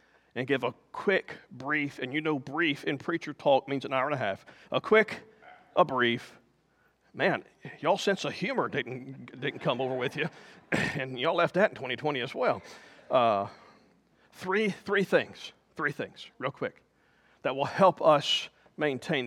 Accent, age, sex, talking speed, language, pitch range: American, 40-59, male, 170 wpm, English, 160-245 Hz